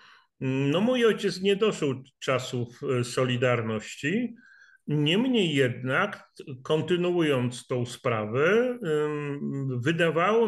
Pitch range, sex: 125-165 Hz, male